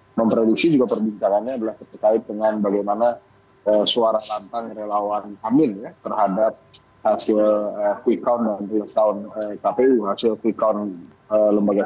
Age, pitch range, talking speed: 20-39, 105-130 Hz, 150 wpm